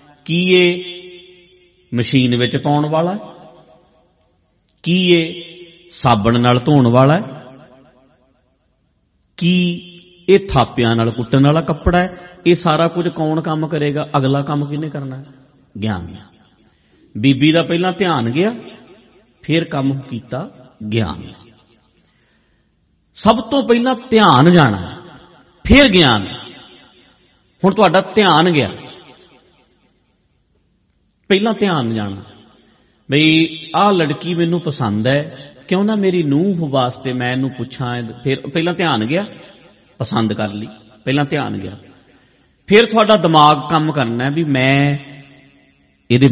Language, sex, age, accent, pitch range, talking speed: English, male, 50-69, Indian, 115-170 Hz, 110 wpm